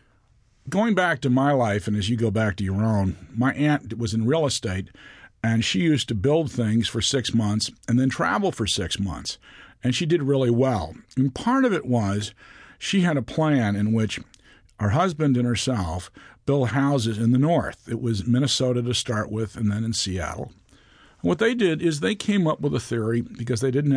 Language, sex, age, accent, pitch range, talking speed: English, male, 50-69, American, 110-150 Hz, 205 wpm